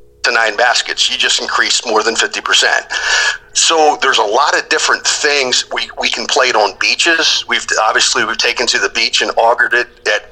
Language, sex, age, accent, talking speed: English, male, 40-59, American, 200 wpm